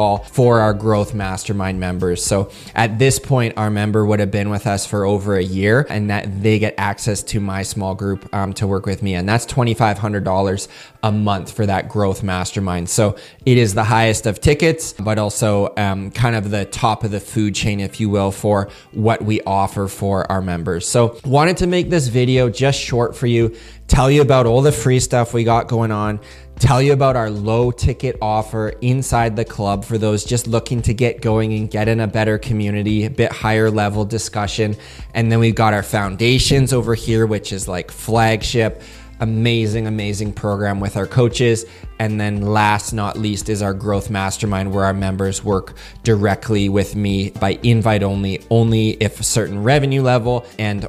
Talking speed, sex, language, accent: 195 wpm, male, English, American